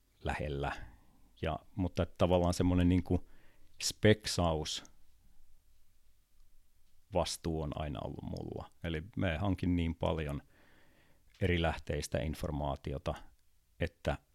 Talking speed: 90 wpm